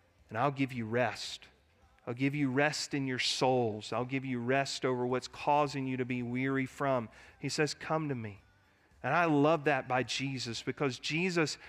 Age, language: 40-59, English